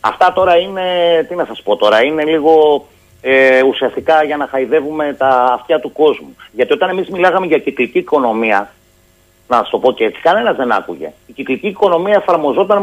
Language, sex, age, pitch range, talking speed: Greek, male, 30-49, 145-235 Hz, 180 wpm